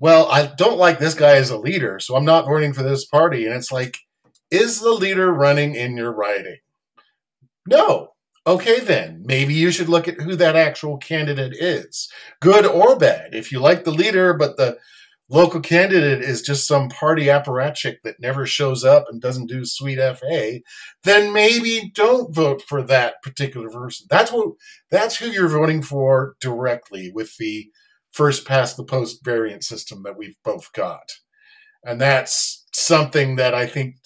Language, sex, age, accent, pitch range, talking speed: English, male, 40-59, American, 120-160 Hz, 170 wpm